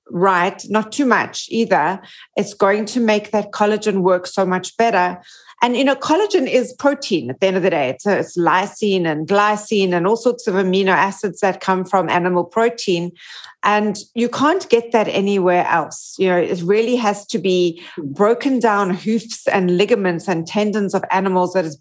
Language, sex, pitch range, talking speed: English, female, 190-230 Hz, 190 wpm